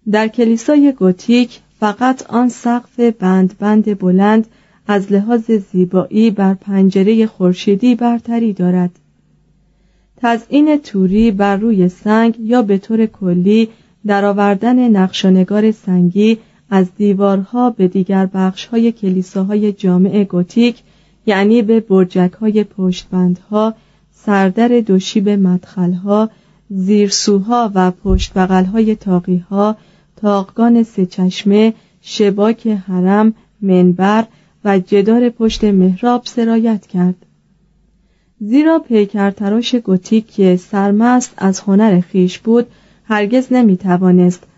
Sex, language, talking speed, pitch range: female, Persian, 100 wpm, 185-225 Hz